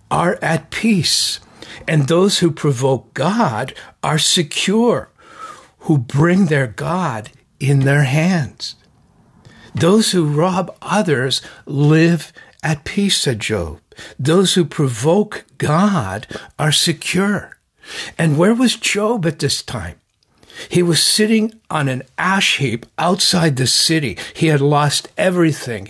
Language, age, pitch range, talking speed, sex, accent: English, 60-79, 135-180 Hz, 125 wpm, male, American